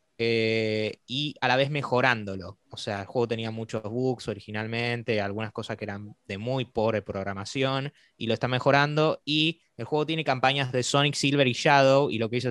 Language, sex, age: Spanish, male, 20-39